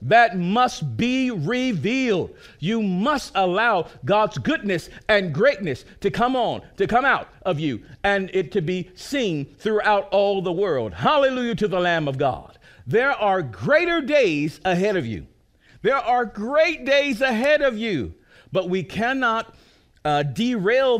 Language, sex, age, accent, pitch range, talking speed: English, male, 50-69, American, 155-215 Hz, 150 wpm